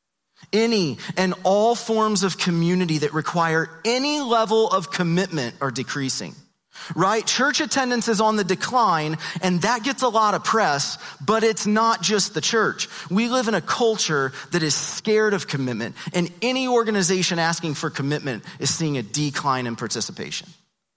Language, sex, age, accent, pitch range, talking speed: English, male, 30-49, American, 160-205 Hz, 160 wpm